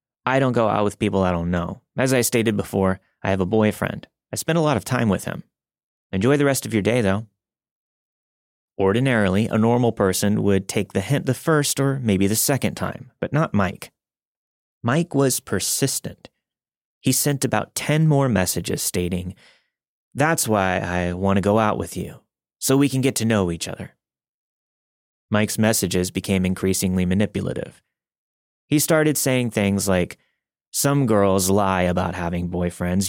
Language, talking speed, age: English, 170 wpm, 30-49